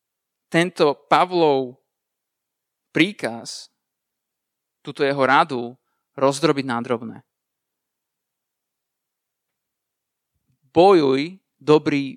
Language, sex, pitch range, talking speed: Slovak, male, 135-170 Hz, 50 wpm